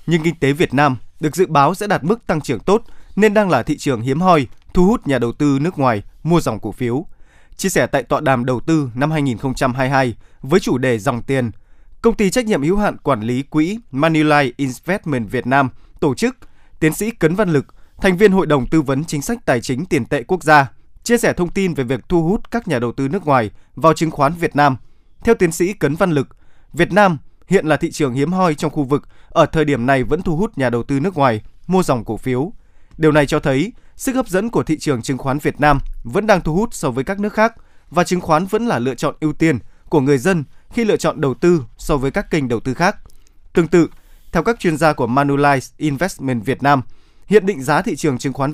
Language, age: Vietnamese, 20-39